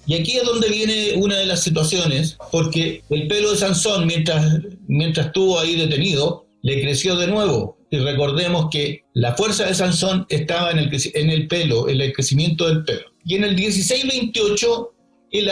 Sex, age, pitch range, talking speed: male, 50-69, 145-190 Hz, 180 wpm